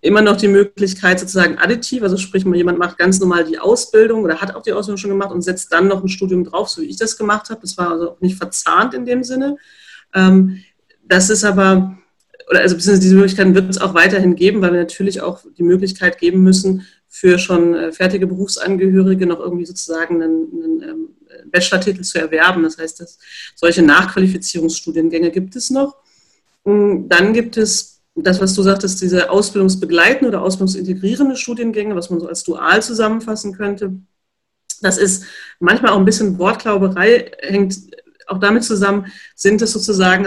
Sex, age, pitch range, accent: female, 30-49, 180-215 Hz, German